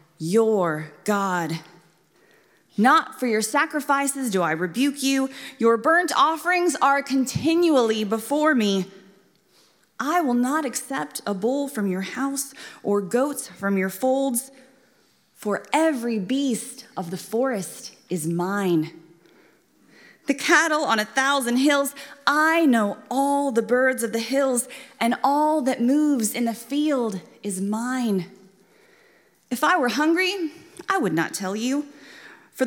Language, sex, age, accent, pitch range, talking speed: English, female, 30-49, American, 215-280 Hz, 130 wpm